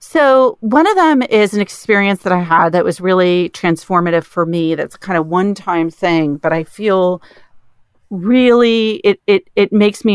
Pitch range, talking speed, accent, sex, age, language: 160-195 Hz, 185 wpm, American, female, 40-59, English